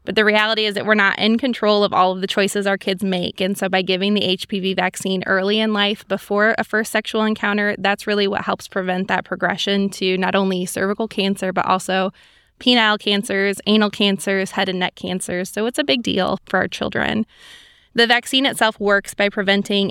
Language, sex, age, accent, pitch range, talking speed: English, female, 20-39, American, 190-215 Hz, 205 wpm